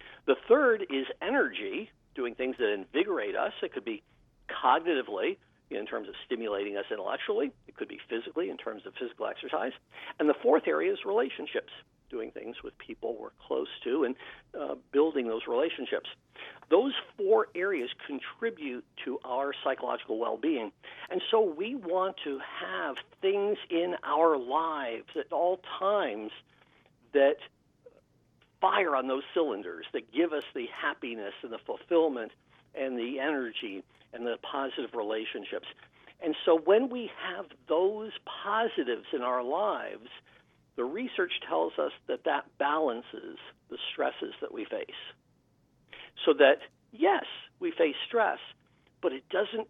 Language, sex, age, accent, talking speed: English, male, 50-69, American, 140 wpm